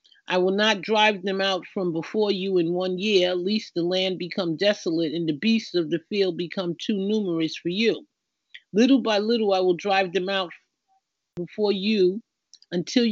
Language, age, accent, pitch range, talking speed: English, 40-59, American, 175-210 Hz, 180 wpm